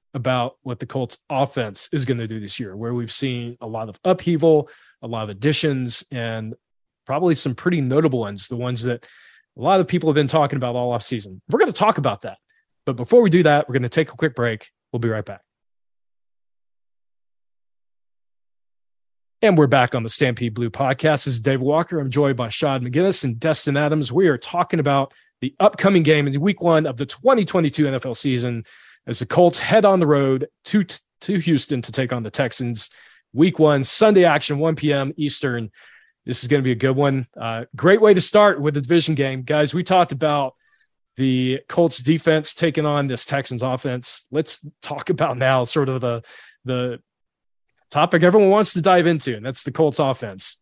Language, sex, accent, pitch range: English, male, American, 125-160 Hz